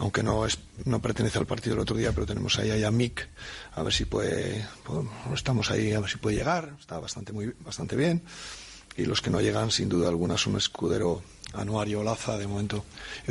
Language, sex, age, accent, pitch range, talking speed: Spanish, male, 40-59, Spanish, 105-130 Hz, 215 wpm